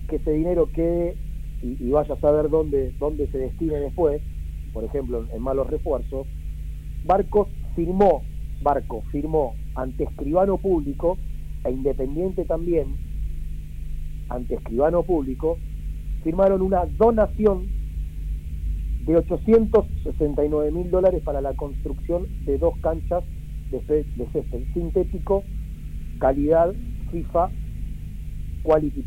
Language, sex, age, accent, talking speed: Spanish, male, 40-59, Argentinian, 110 wpm